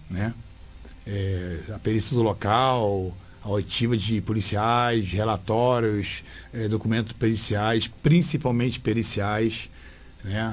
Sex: male